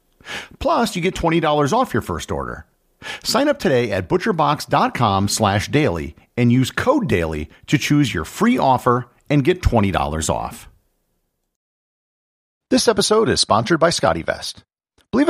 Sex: male